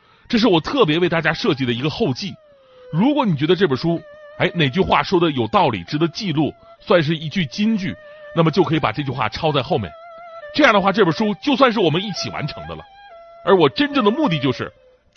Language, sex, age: Chinese, male, 30-49